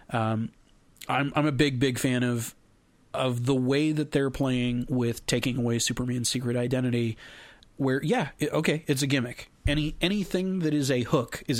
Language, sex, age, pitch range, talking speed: English, male, 30-49, 120-140 Hz, 175 wpm